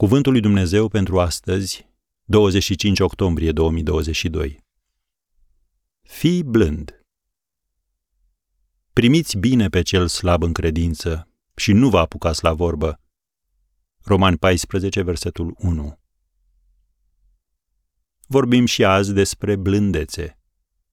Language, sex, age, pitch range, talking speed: Romanian, male, 40-59, 80-105 Hz, 90 wpm